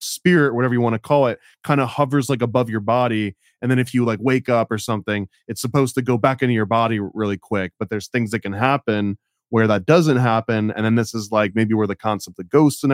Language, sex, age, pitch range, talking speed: English, male, 20-39, 110-130 Hz, 255 wpm